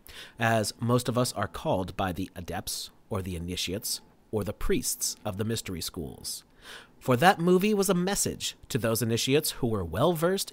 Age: 30-49